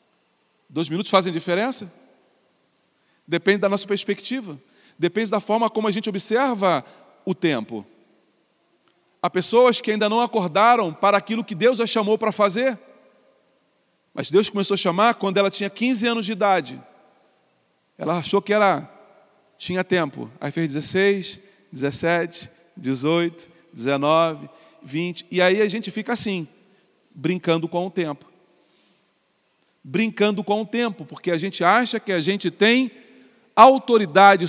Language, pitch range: Portuguese, 165-215 Hz